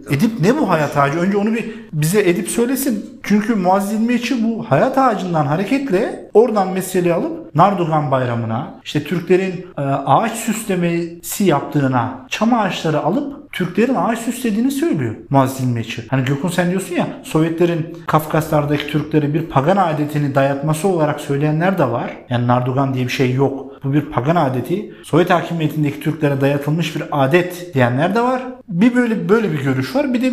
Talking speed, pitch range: 160 wpm, 150-200 Hz